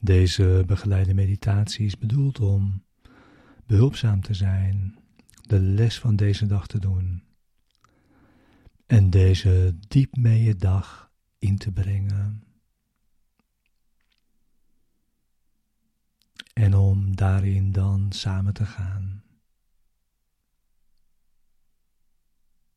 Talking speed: 80 wpm